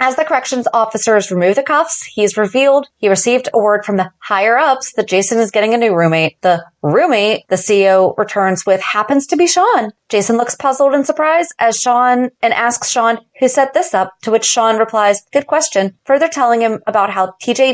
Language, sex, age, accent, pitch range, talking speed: English, female, 30-49, American, 190-255 Hz, 205 wpm